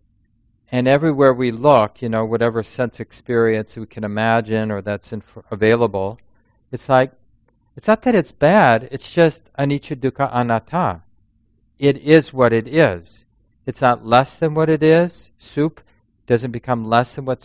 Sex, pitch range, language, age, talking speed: male, 110-125 Hz, English, 50-69, 160 wpm